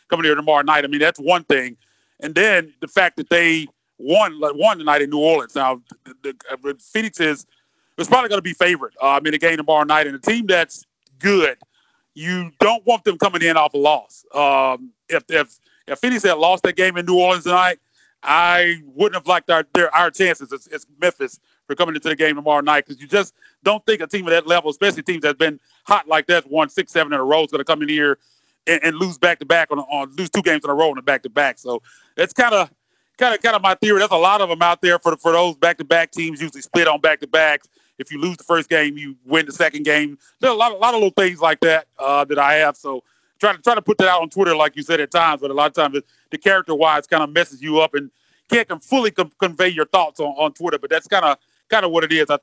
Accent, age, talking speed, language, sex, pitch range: American, 30-49, 265 wpm, English, male, 145-180 Hz